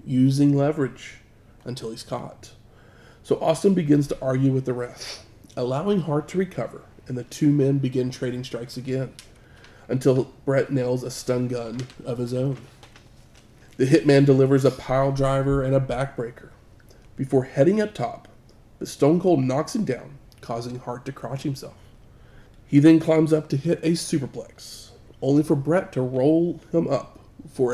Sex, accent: male, American